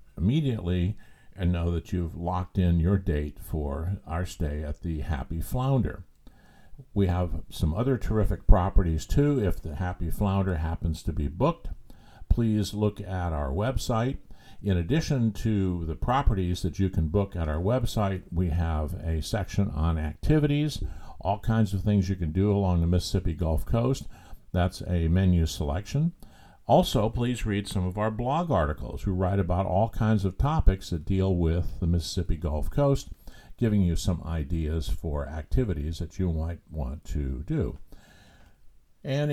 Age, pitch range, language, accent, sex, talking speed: 50-69, 80-105 Hz, English, American, male, 160 wpm